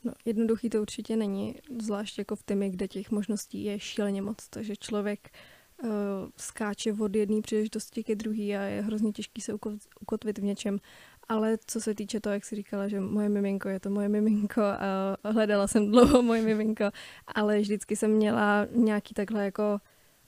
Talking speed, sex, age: 180 wpm, female, 20-39